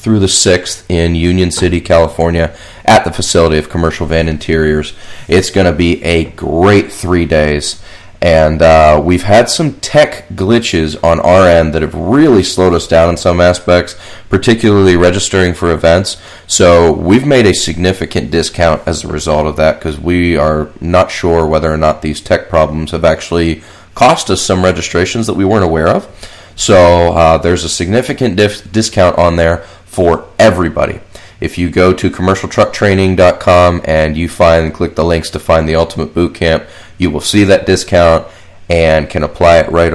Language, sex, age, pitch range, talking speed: English, male, 30-49, 80-95 Hz, 175 wpm